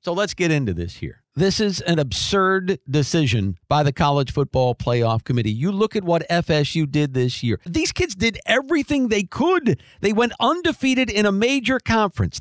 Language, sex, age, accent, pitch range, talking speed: English, male, 50-69, American, 165-245 Hz, 185 wpm